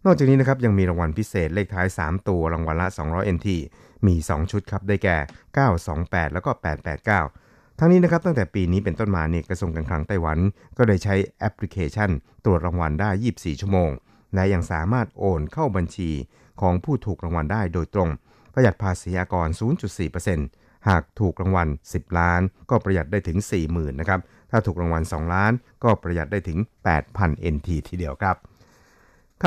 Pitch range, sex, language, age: 85-105 Hz, male, Thai, 60-79